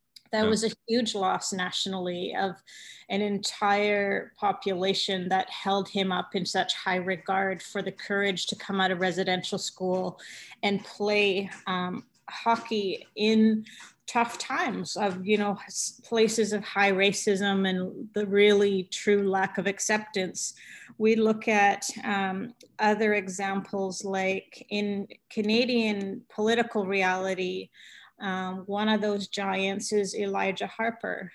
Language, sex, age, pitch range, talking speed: English, female, 30-49, 190-215 Hz, 130 wpm